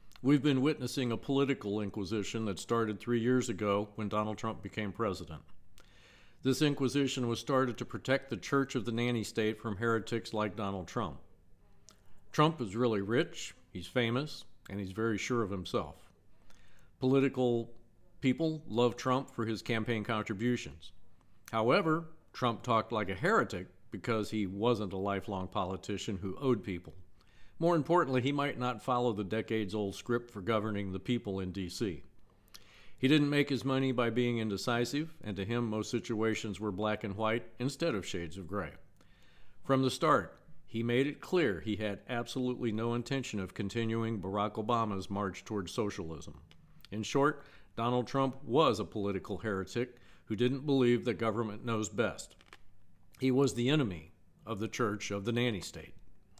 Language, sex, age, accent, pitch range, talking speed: English, male, 50-69, American, 100-125 Hz, 160 wpm